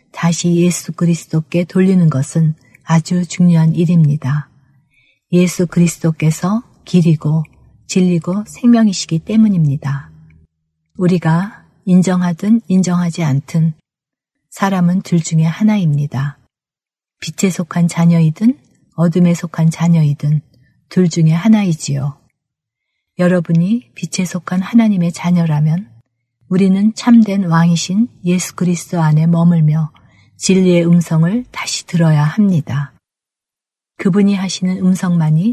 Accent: native